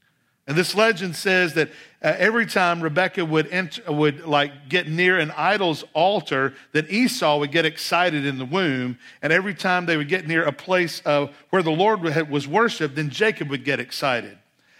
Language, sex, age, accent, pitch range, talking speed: English, male, 50-69, American, 155-185 Hz, 185 wpm